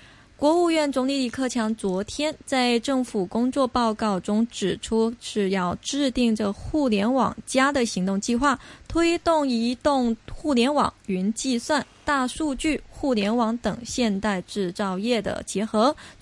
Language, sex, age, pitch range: Chinese, female, 20-39, 215-270 Hz